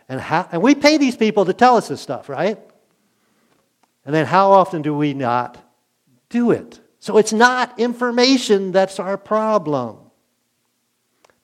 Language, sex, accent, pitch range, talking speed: English, male, American, 145-220 Hz, 155 wpm